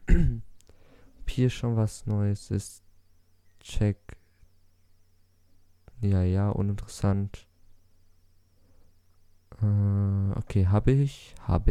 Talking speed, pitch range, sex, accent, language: 70 wpm, 90-105 Hz, male, German, German